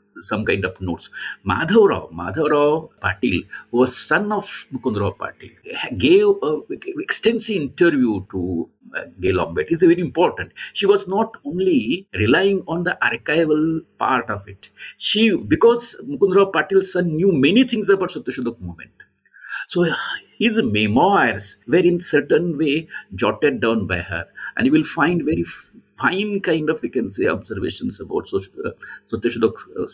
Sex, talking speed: male, 145 wpm